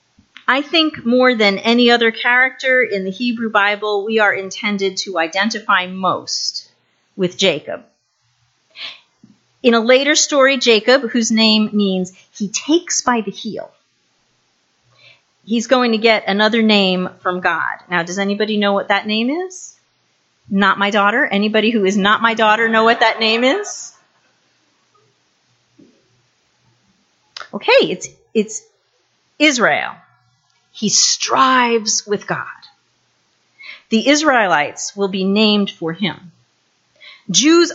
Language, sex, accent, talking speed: English, female, American, 125 wpm